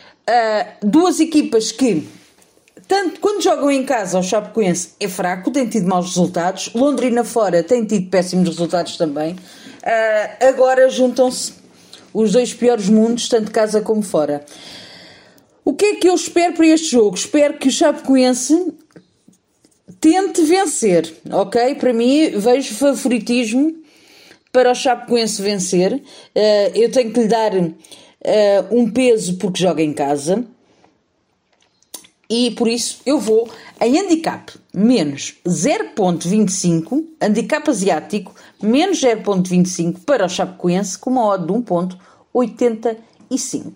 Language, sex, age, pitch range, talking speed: Portuguese, female, 40-59, 195-265 Hz, 120 wpm